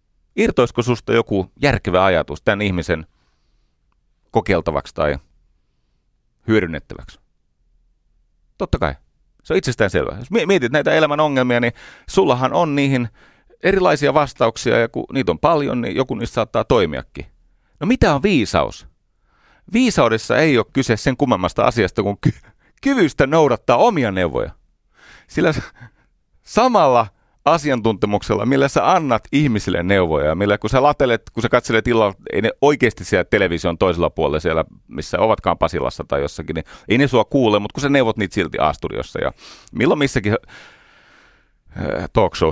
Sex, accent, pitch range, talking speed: male, native, 80-130 Hz, 140 wpm